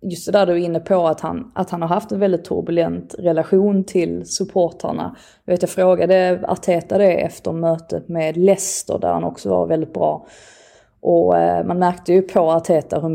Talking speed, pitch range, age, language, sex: 185 wpm, 165-205 Hz, 20-39, Swedish, female